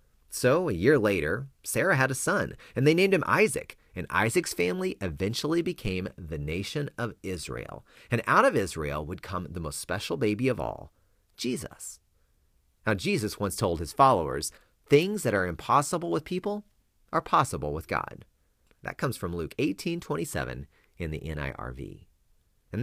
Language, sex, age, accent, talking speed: English, male, 40-59, American, 160 wpm